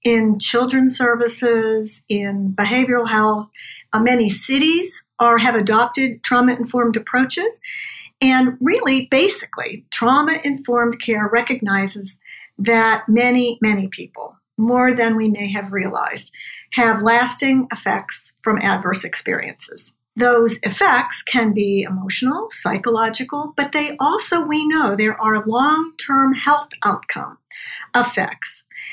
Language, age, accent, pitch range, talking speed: English, 50-69, American, 215-265 Hz, 110 wpm